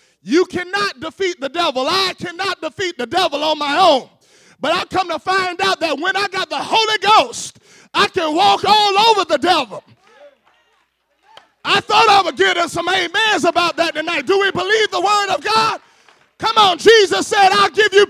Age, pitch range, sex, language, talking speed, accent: 30-49, 350-440 Hz, male, English, 190 wpm, American